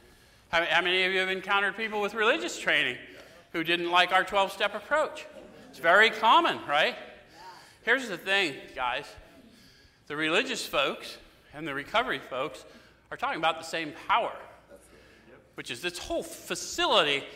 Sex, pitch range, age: male, 165-235 Hz, 40-59